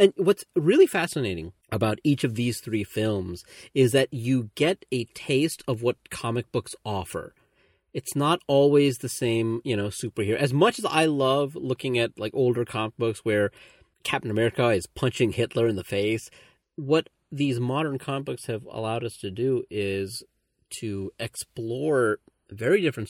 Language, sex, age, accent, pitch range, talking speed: English, male, 30-49, American, 110-140 Hz, 165 wpm